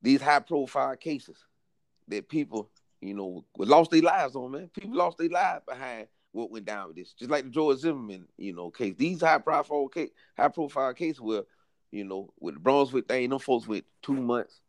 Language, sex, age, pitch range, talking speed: English, male, 30-49, 110-155 Hz, 195 wpm